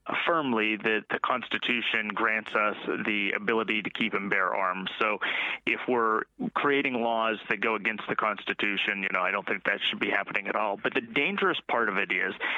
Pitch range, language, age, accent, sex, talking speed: 105-120 Hz, English, 30-49, American, male, 195 wpm